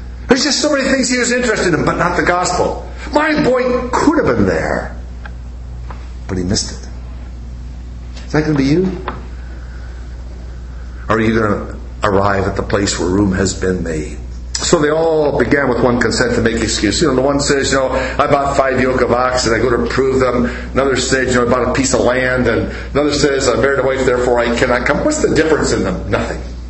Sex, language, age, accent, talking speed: male, English, 60-79, American, 220 wpm